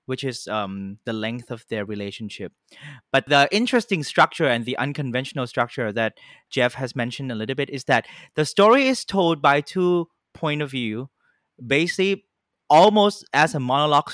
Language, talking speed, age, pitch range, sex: English, 165 wpm, 20-39, 120-160 Hz, male